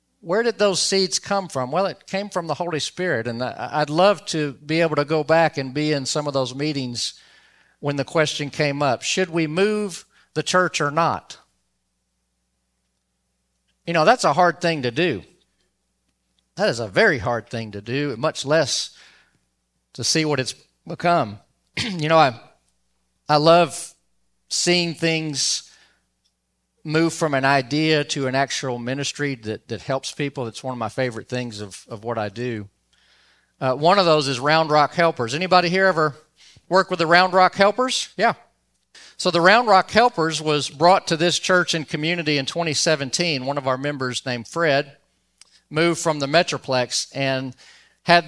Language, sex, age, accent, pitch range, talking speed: English, male, 40-59, American, 125-170 Hz, 170 wpm